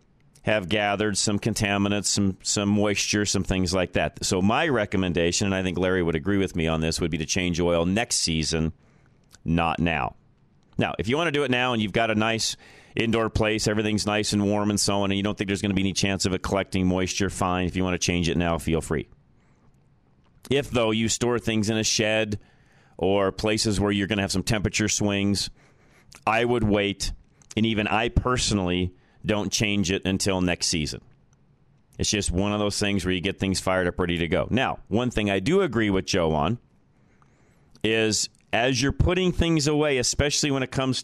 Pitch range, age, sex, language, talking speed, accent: 95-120 Hz, 40-59, male, English, 210 wpm, American